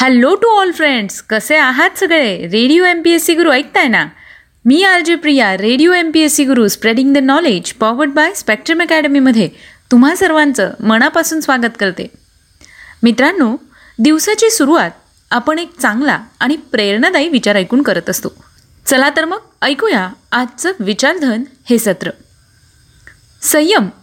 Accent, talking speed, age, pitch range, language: native, 135 wpm, 30-49, 220-305 Hz, Marathi